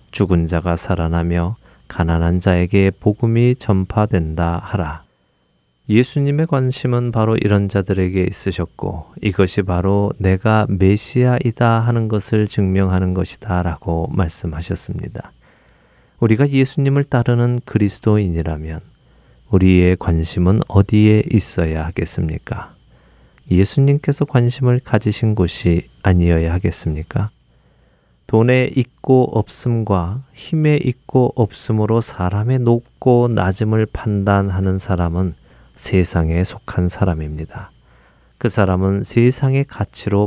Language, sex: Korean, male